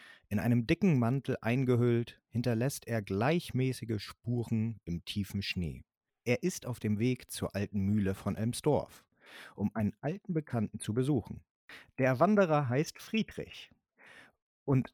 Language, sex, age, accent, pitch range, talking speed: German, male, 30-49, German, 110-160 Hz, 135 wpm